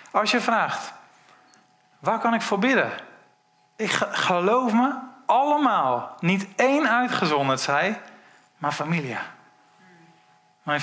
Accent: Dutch